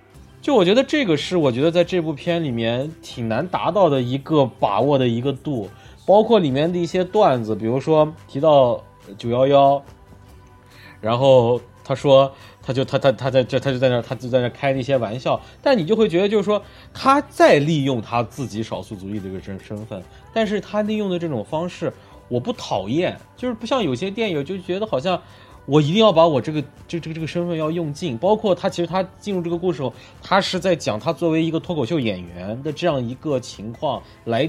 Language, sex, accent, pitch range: Chinese, male, native, 120-180 Hz